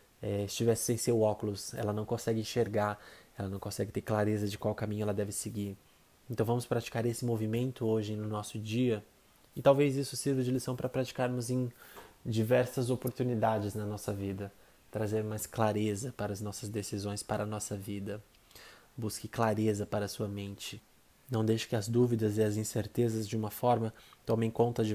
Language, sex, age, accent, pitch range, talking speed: Portuguese, male, 20-39, Brazilian, 105-115 Hz, 180 wpm